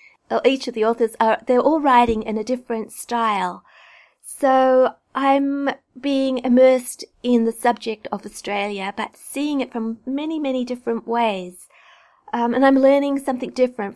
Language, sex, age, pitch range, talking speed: English, female, 30-49, 200-245 Hz, 150 wpm